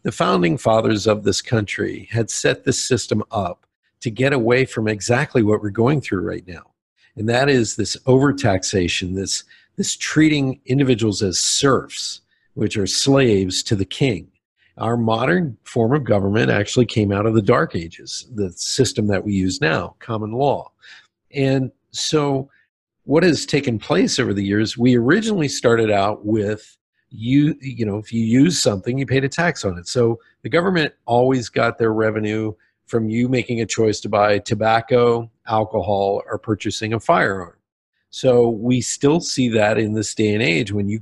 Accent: American